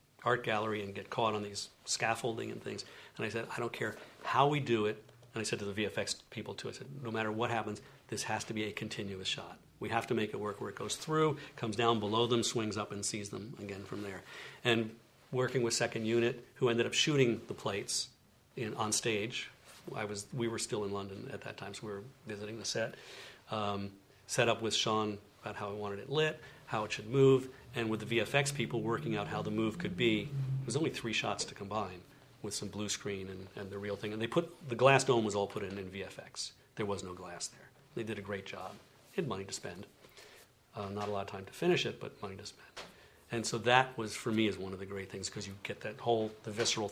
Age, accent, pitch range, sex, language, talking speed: 50-69, American, 100-120 Hz, male, English, 250 wpm